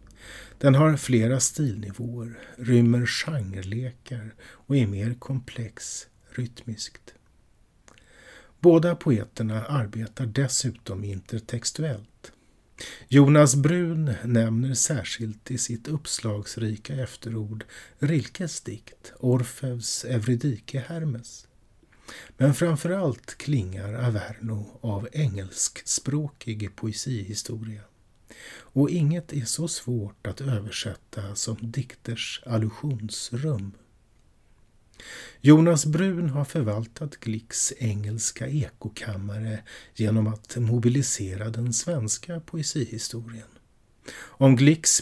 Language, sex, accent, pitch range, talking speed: Swedish, male, native, 110-140 Hz, 80 wpm